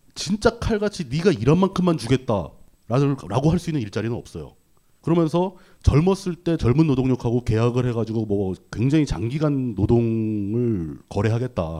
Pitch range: 105-160 Hz